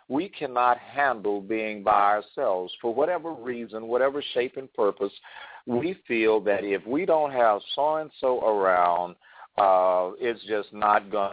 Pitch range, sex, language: 90-120 Hz, male, English